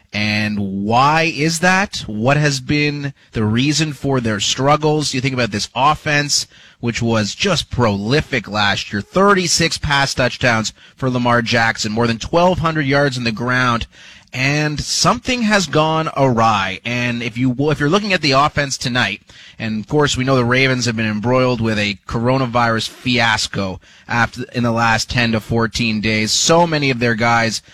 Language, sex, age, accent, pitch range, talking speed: English, male, 30-49, American, 115-155 Hz, 175 wpm